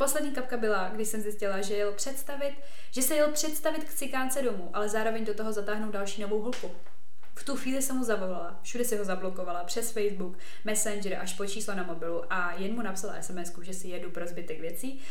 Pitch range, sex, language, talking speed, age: 185-220 Hz, female, Czech, 205 wpm, 20-39